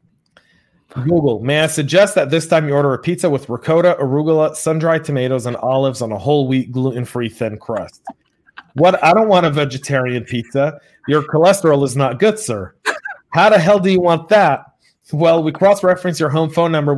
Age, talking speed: 30-49, 185 wpm